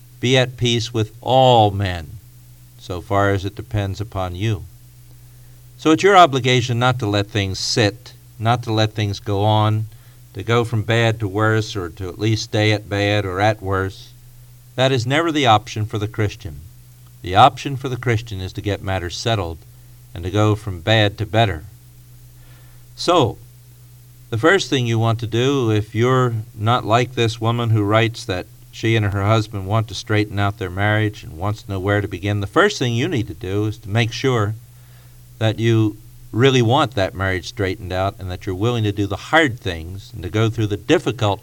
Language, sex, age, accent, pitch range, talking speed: English, male, 50-69, American, 105-125 Hz, 195 wpm